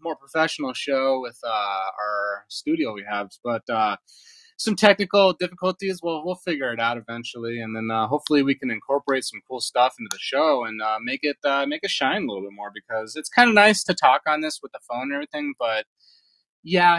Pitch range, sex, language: 110-150 Hz, male, English